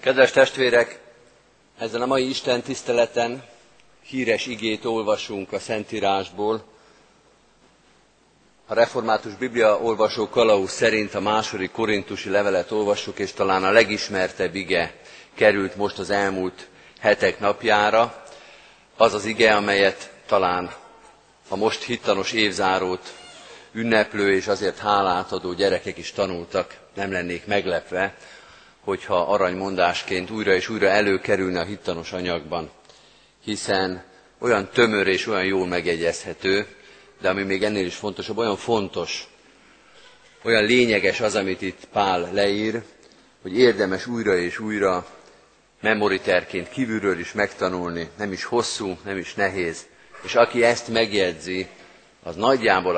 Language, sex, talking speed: Hungarian, male, 120 wpm